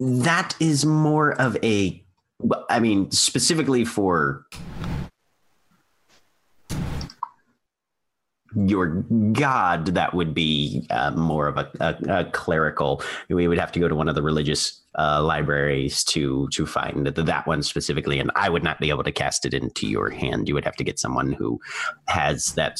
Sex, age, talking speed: male, 30-49, 160 wpm